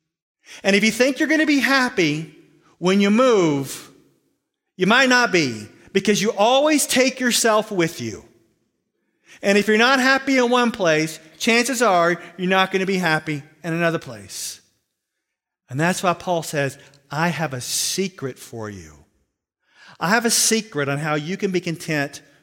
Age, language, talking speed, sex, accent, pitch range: 40-59, English, 170 wpm, male, American, 150-195 Hz